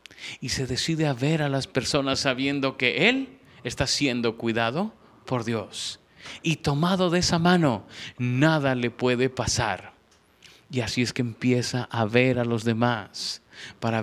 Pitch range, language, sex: 125-185 Hz, Spanish, male